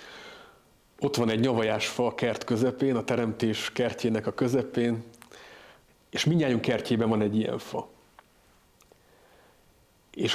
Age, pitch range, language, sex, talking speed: 40-59, 115-135 Hz, Hungarian, male, 115 wpm